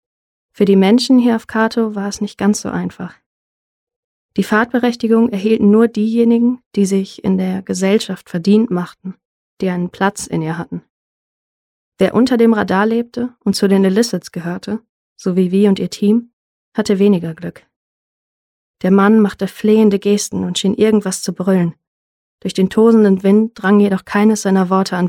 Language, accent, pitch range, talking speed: German, German, 185-215 Hz, 165 wpm